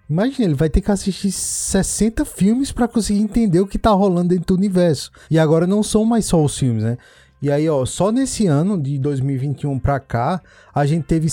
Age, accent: 20-39, Brazilian